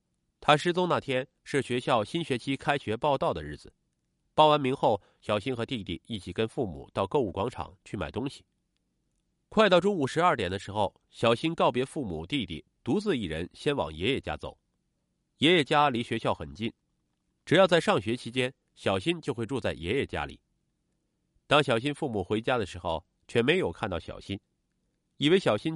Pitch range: 105-160 Hz